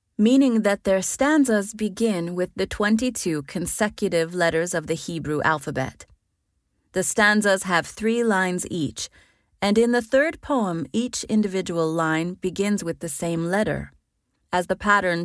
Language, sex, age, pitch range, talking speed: English, female, 30-49, 165-215 Hz, 140 wpm